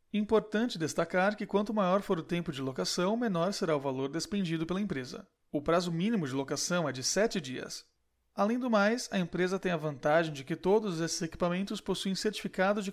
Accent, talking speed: Brazilian, 195 wpm